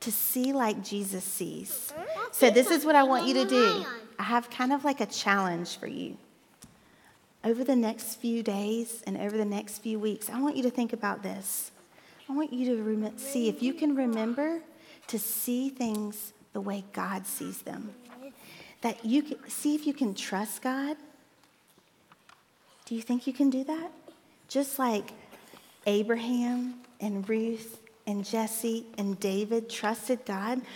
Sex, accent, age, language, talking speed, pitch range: female, American, 40-59, English, 170 wpm, 215-275 Hz